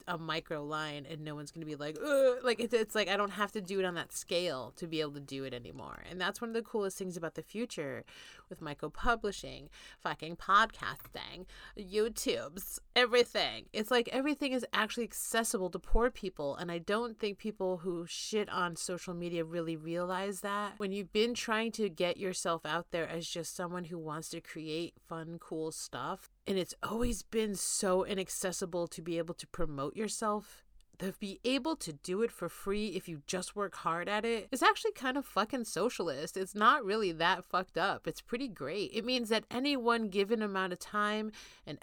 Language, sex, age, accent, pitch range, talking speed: English, female, 30-49, American, 170-220 Hz, 200 wpm